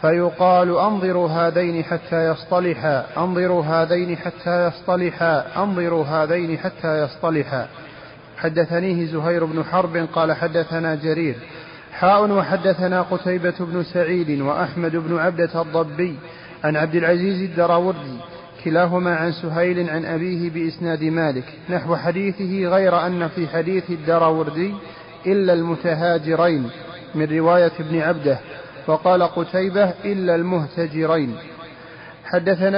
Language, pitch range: Arabic, 165-185 Hz